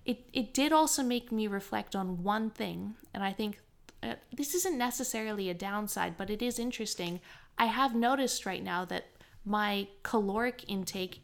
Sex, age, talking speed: female, 20-39, 170 wpm